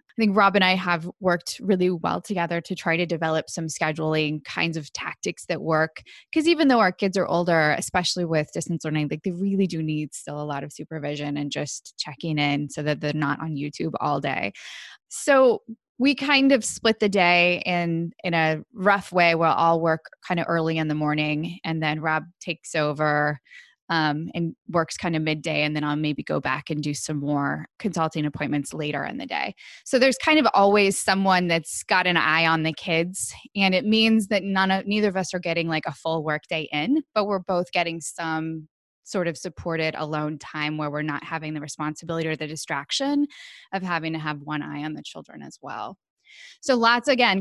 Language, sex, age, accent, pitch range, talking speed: English, female, 20-39, American, 155-190 Hz, 210 wpm